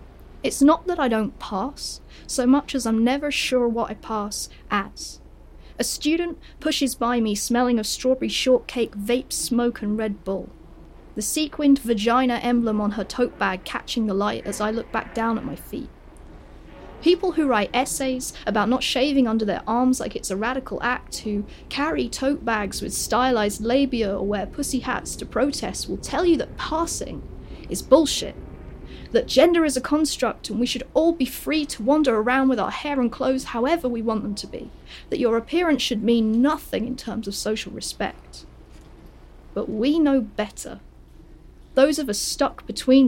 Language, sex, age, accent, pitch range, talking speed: English, female, 30-49, British, 215-270 Hz, 180 wpm